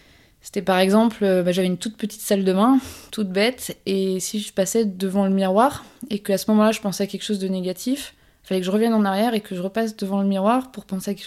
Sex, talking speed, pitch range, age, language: female, 260 wpm, 190-220 Hz, 20-39, French